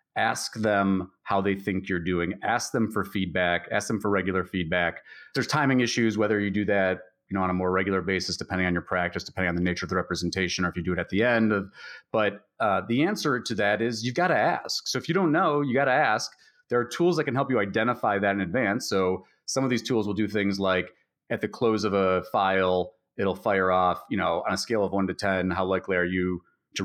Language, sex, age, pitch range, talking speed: English, male, 30-49, 90-115 Hz, 250 wpm